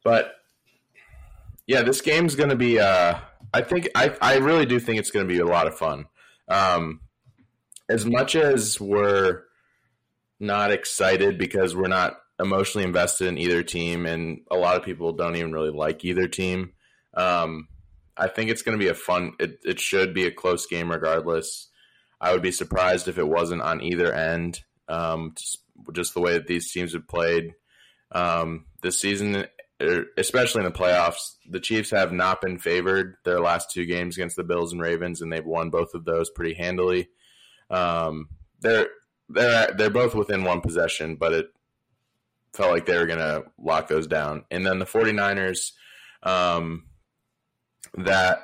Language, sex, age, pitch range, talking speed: English, male, 20-39, 85-95 Hz, 180 wpm